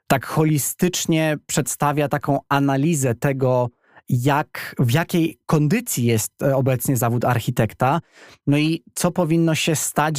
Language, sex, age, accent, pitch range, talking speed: Polish, male, 20-39, native, 115-145 Hz, 120 wpm